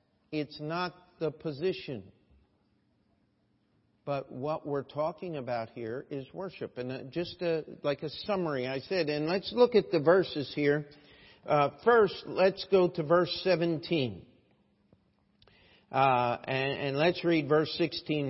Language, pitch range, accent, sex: English, 145-180 Hz, American, male